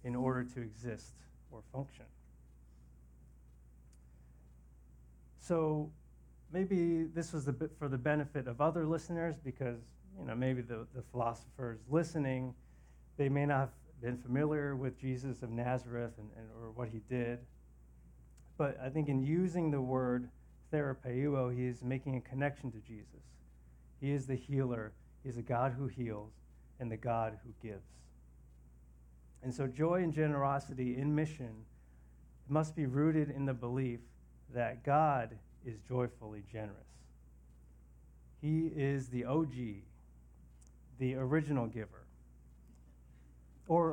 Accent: American